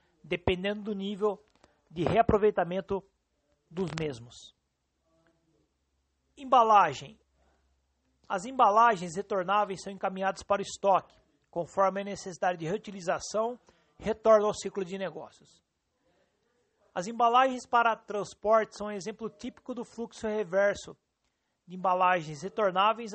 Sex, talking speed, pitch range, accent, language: male, 105 wpm, 180-220 Hz, Brazilian, Portuguese